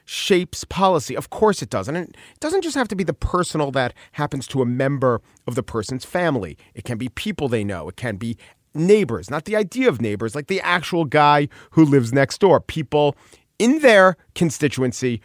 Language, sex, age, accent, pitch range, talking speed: English, male, 40-59, American, 125-175 Hz, 195 wpm